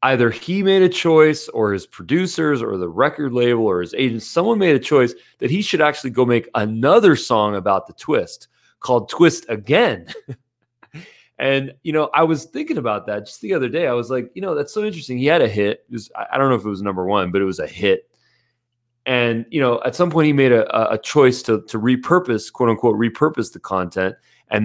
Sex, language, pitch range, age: male, English, 110-150 Hz, 30-49